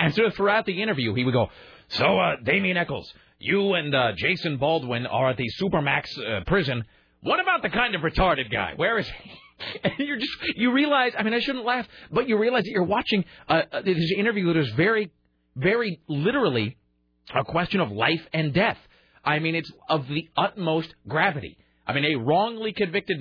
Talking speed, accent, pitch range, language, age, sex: 200 wpm, American, 120-190 Hz, English, 40-59, male